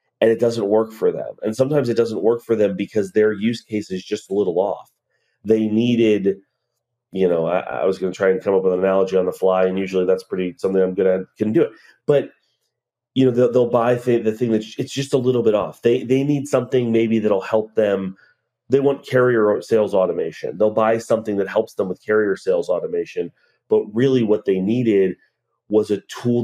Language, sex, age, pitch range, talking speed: English, male, 30-49, 105-135 Hz, 225 wpm